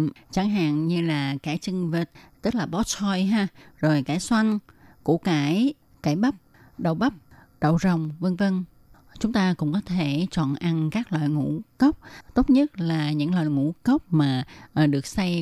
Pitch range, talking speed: 150-195 Hz, 180 wpm